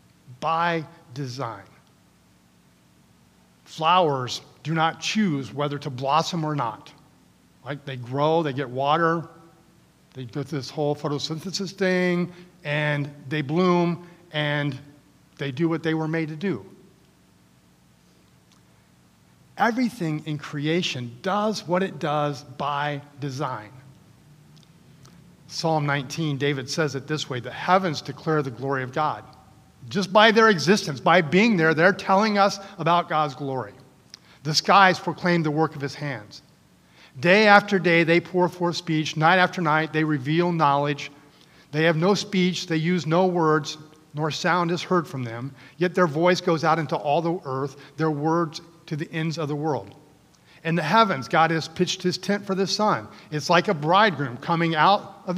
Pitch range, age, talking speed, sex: 145-175 Hz, 40-59, 155 wpm, male